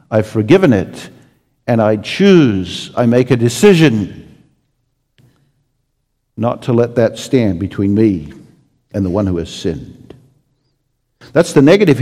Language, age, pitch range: English, 50-69, 130-160 Hz